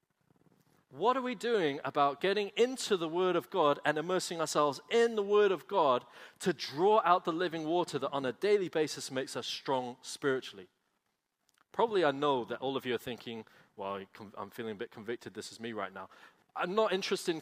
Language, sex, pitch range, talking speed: English, male, 140-190 Hz, 200 wpm